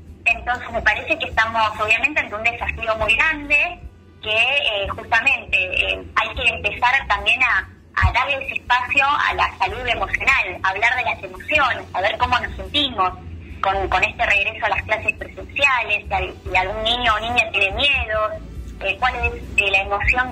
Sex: male